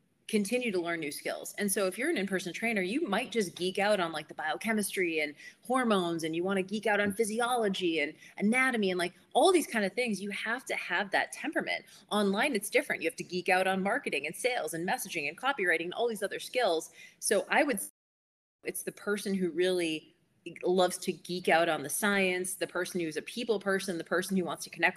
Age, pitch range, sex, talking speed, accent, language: 30-49, 170-210 Hz, female, 230 wpm, American, English